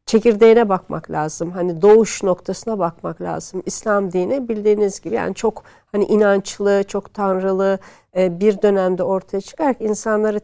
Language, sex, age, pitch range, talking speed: Turkish, female, 60-79, 185-225 Hz, 130 wpm